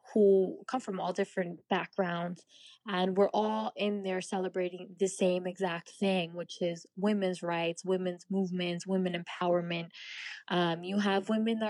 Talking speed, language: 150 wpm, English